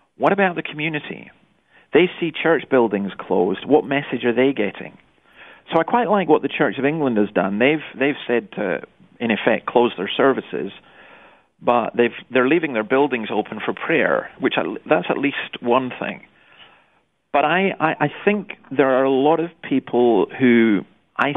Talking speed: 175 wpm